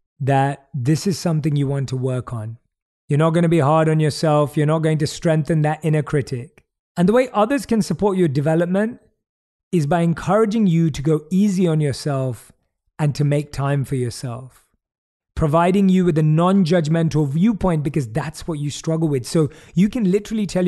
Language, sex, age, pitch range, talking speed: English, male, 30-49, 130-180 Hz, 190 wpm